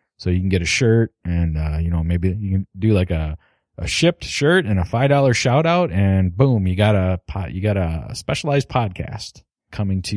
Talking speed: 220 wpm